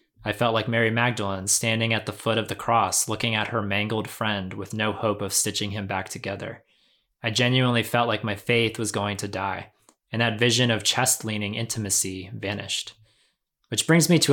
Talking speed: 195 wpm